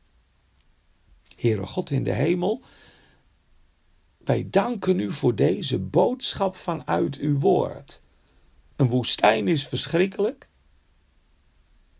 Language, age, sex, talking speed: Dutch, 50-69, male, 90 wpm